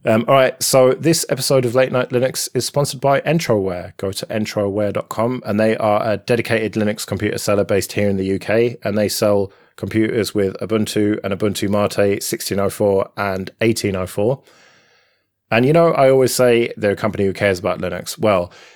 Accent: British